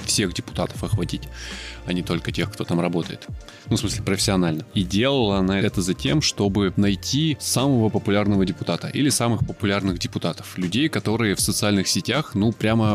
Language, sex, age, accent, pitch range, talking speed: Russian, male, 20-39, native, 100-120 Hz, 165 wpm